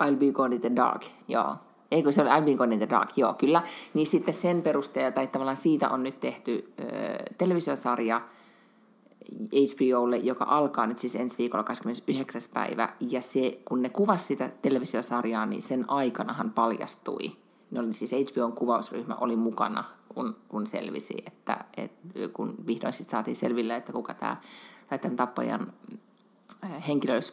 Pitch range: 120-170 Hz